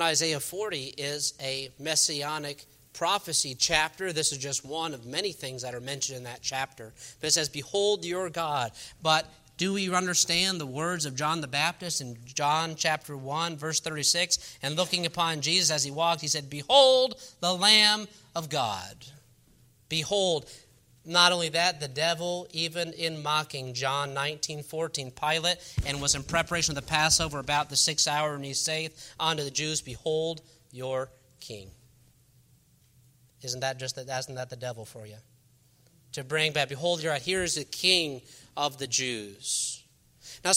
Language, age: English, 40-59